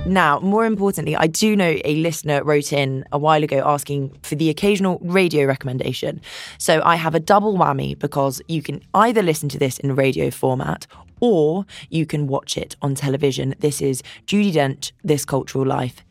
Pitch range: 140-180 Hz